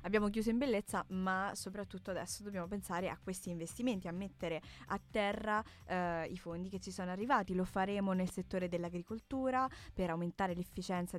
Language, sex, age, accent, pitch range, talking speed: Italian, female, 20-39, native, 175-200 Hz, 165 wpm